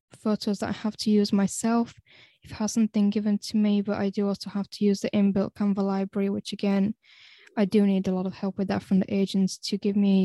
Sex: female